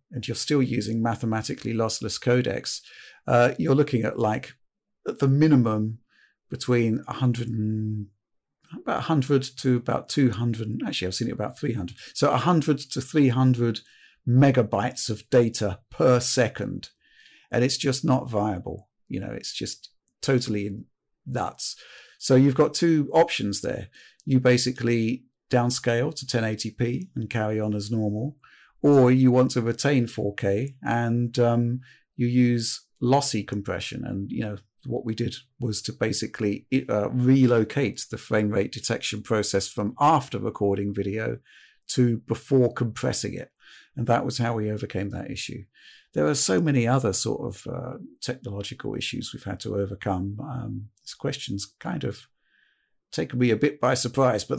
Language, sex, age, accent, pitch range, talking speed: English, male, 50-69, British, 110-130 Hz, 150 wpm